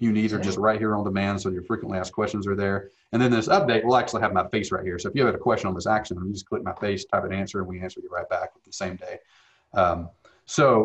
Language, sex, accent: English, male, American